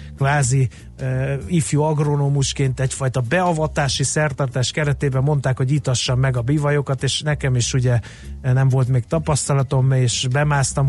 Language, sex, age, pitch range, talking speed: Hungarian, male, 30-49, 120-140 Hz, 130 wpm